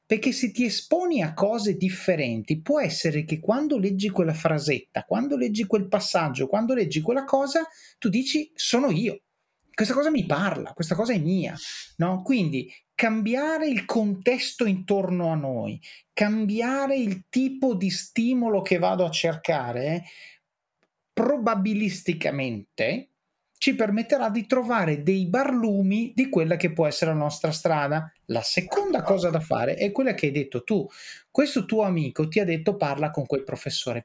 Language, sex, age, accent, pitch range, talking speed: Italian, male, 30-49, native, 155-230 Hz, 150 wpm